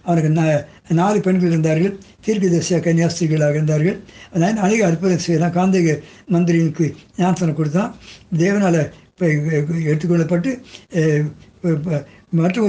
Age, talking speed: 60-79, 100 wpm